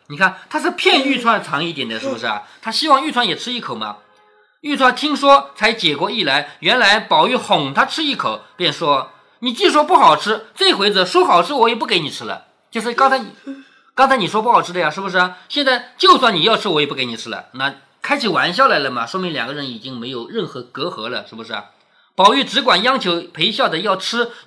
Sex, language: male, Chinese